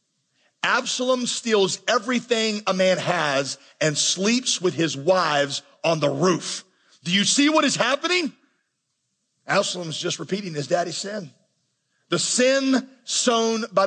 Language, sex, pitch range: English, male, 160-255 Hz